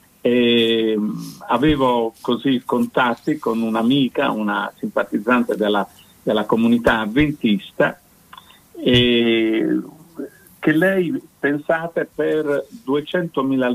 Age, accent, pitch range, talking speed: 50-69, native, 120-150 Hz, 80 wpm